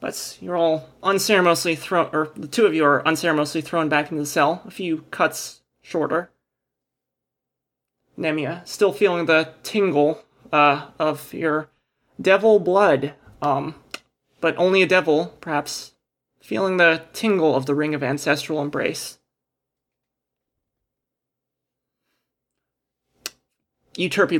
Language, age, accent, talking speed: English, 20-39, American, 115 wpm